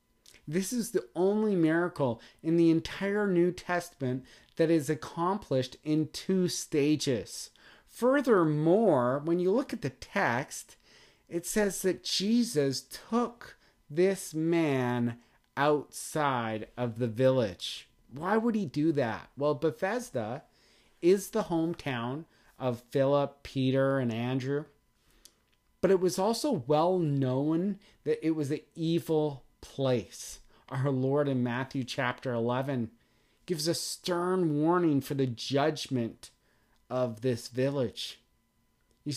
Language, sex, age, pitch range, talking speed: English, male, 30-49, 125-165 Hz, 120 wpm